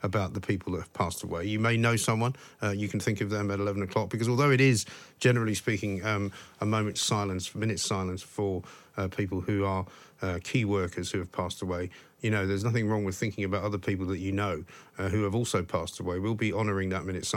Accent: British